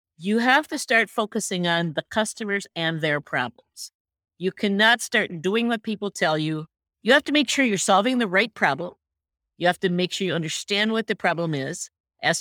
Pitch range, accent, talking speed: 165-215 Hz, American, 200 wpm